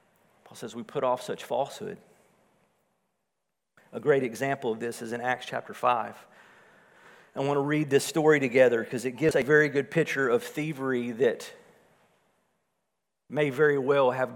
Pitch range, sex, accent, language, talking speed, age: 135-190 Hz, male, American, English, 155 wpm, 50-69